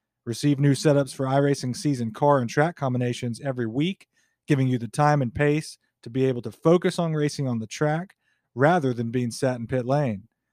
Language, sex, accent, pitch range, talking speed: English, male, American, 120-145 Hz, 200 wpm